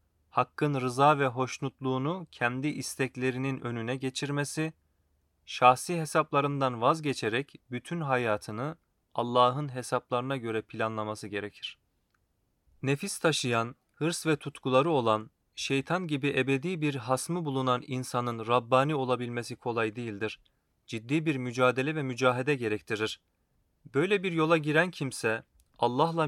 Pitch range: 120-150 Hz